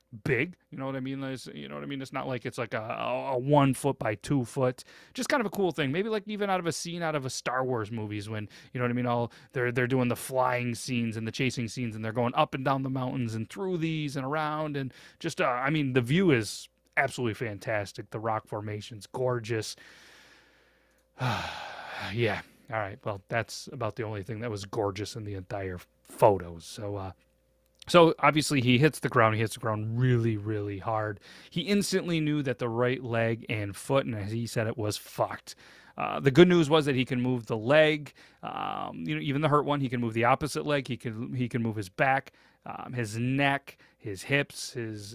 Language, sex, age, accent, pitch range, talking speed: English, male, 30-49, American, 115-150 Hz, 225 wpm